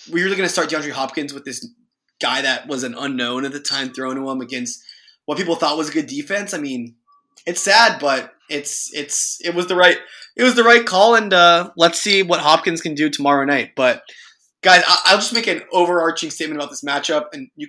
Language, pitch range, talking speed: English, 145-215 Hz, 225 wpm